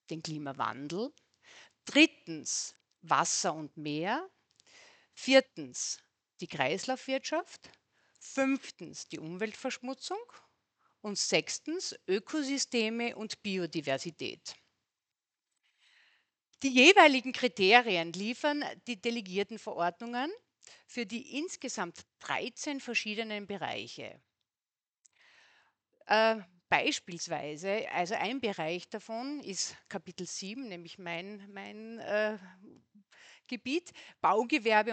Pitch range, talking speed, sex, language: 185-270 Hz, 75 wpm, female, German